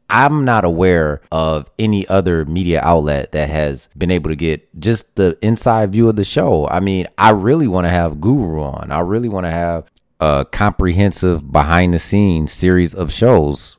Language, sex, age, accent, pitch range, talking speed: English, male, 30-49, American, 85-110 Hz, 185 wpm